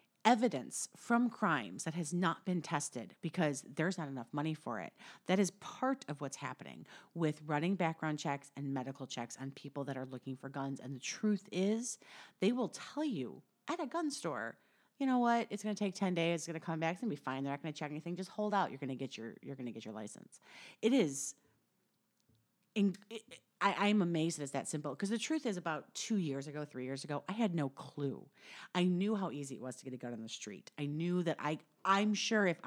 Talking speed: 245 wpm